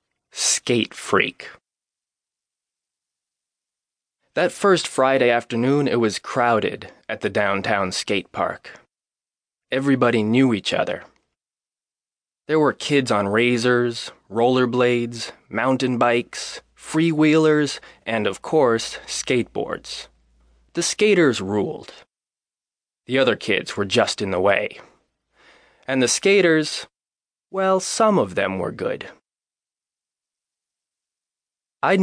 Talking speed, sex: 95 wpm, male